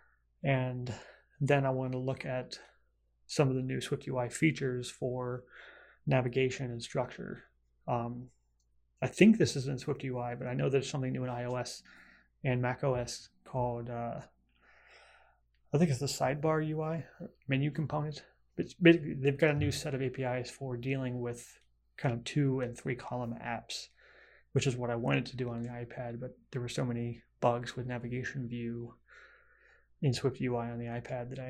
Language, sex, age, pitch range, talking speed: English, male, 30-49, 120-135 Hz, 170 wpm